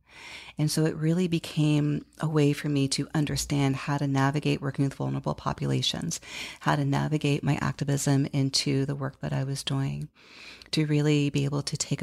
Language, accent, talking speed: English, American, 180 wpm